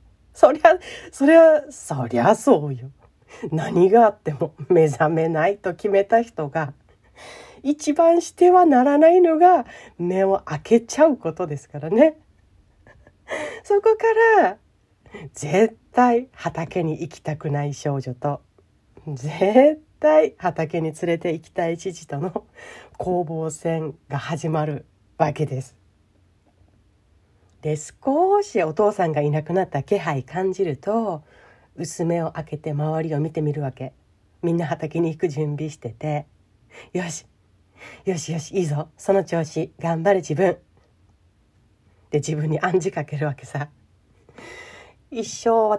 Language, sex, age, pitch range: Japanese, female, 40-59, 150-220 Hz